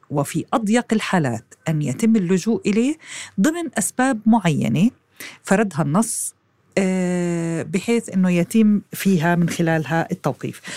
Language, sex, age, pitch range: Arabic, female, 40-59, 155-215 Hz